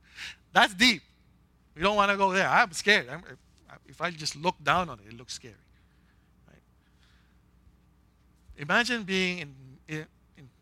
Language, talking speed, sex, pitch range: English, 145 wpm, male, 115-175 Hz